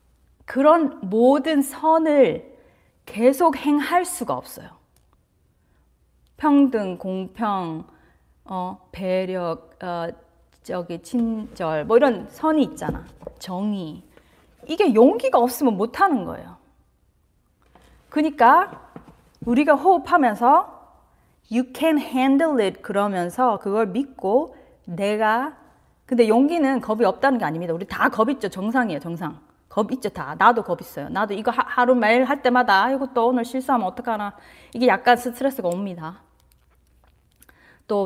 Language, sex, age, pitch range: Korean, female, 30-49, 190-260 Hz